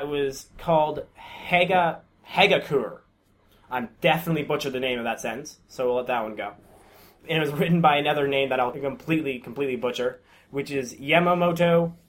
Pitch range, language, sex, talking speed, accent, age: 135-175 Hz, English, male, 170 wpm, American, 20-39